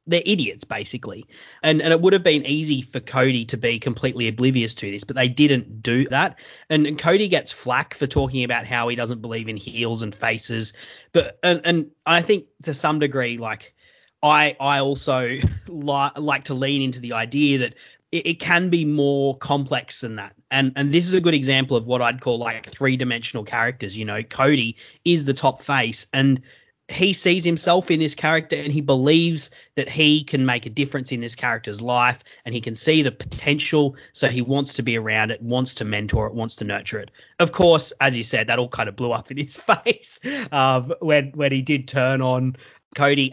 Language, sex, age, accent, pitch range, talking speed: English, male, 30-49, Australian, 115-145 Hz, 210 wpm